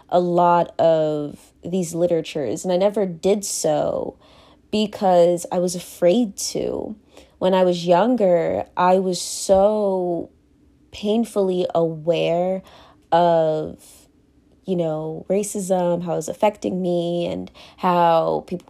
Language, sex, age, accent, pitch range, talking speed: English, female, 20-39, American, 165-195 Hz, 115 wpm